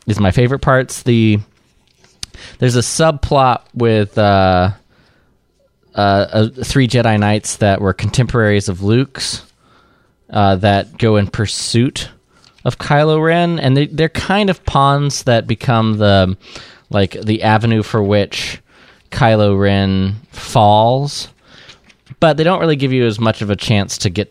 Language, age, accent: English, 20-39, American